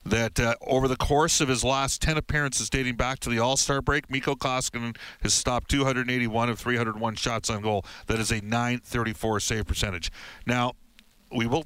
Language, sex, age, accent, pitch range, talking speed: English, male, 50-69, American, 105-130 Hz, 185 wpm